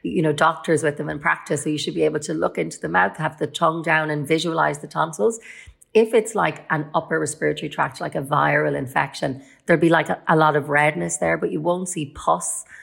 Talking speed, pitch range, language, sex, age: 235 wpm, 145-175 Hz, English, female, 30-49